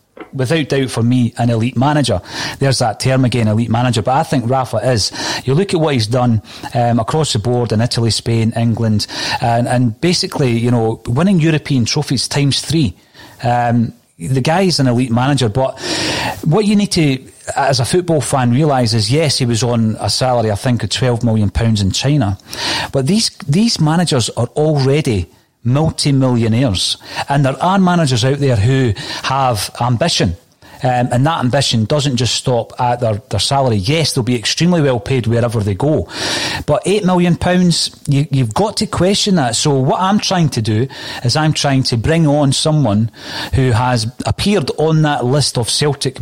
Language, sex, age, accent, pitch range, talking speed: English, male, 40-59, British, 115-150 Hz, 180 wpm